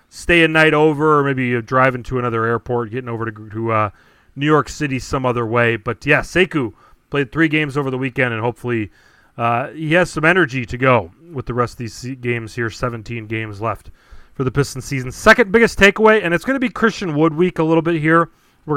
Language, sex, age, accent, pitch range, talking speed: English, male, 30-49, American, 120-155 Hz, 220 wpm